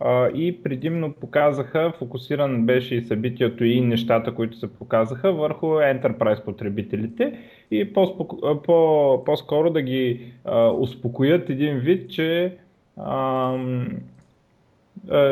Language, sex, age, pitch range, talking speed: Bulgarian, male, 20-39, 120-165 Hz, 100 wpm